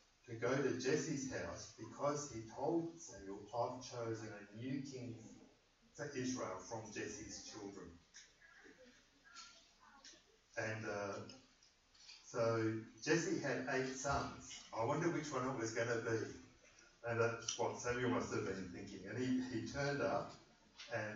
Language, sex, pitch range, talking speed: English, male, 105-130 Hz, 135 wpm